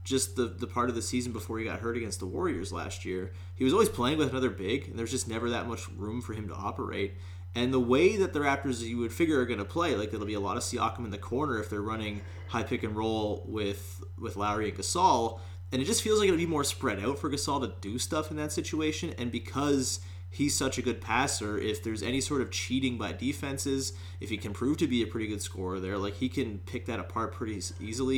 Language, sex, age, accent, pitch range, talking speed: English, male, 30-49, American, 95-125 Hz, 260 wpm